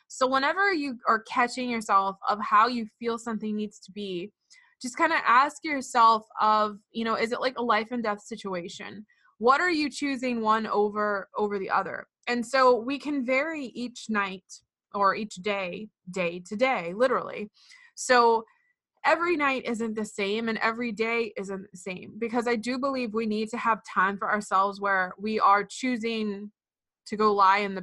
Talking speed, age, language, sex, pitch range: 185 wpm, 20-39, English, female, 200-245 Hz